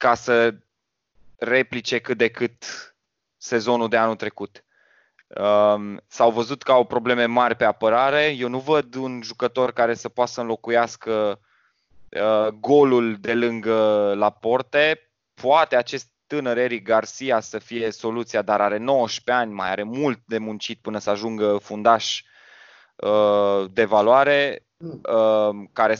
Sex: male